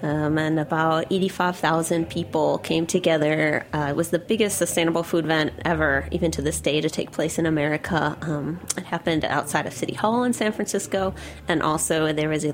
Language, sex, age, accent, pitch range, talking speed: English, female, 20-39, American, 155-180 Hz, 190 wpm